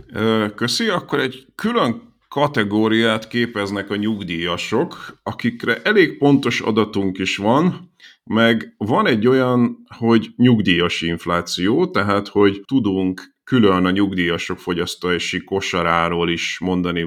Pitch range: 85-105 Hz